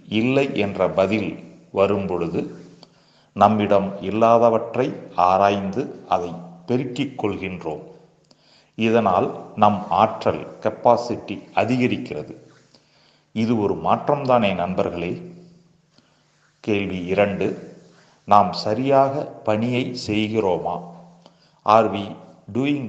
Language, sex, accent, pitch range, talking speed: Tamil, male, native, 95-125 Hz, 75 wpm